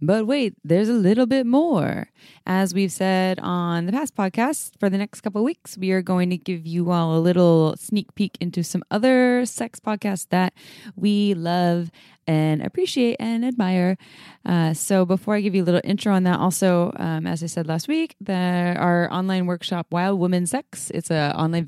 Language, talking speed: English, 195 wpm